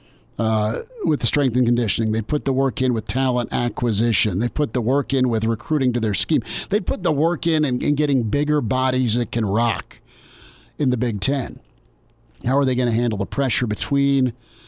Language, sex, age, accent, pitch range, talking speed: English, male, 50-69, American, 115-140 Hz, 200 wpm